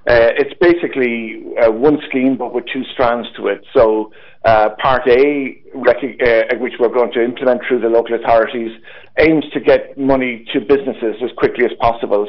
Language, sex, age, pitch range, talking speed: English, male, 50-69, 115-130 Hz, 175 wpm